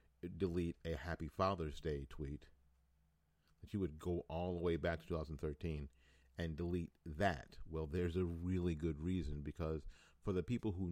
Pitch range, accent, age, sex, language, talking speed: 75-90 Hz, American, 50-69, male, English, 165 wpm